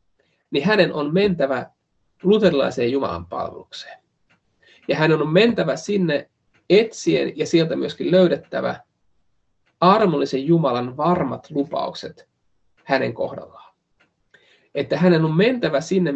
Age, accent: 30-49, native